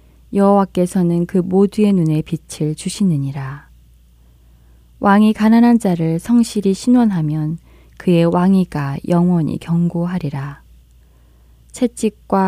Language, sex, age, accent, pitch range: Korean, female, 20-39, native, 145-190 Hz